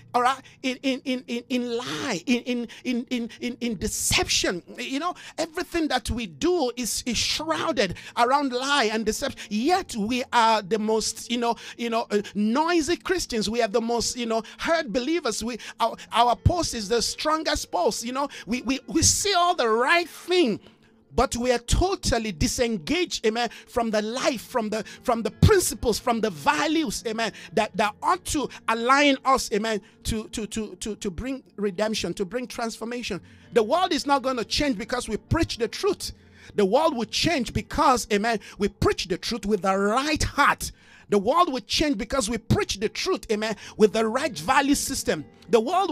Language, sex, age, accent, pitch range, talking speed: English, male, 50-69, Nigerian, 220-275 Hz, 185 wpm